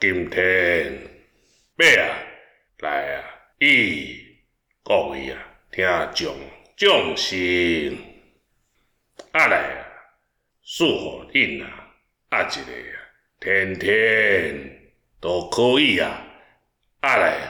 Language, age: Chinese, 60-79